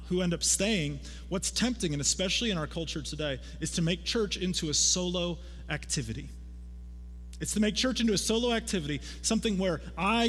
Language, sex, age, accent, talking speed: English, male, 30-49, American, 180 wpm